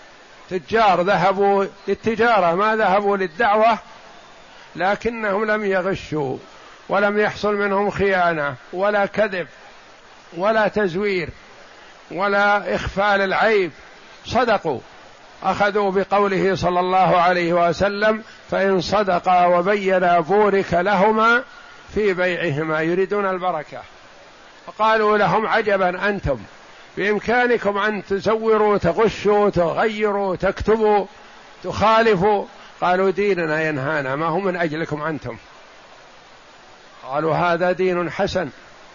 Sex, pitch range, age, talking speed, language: male, 170-205 Hz, 60-79, 90 wpm, Arabic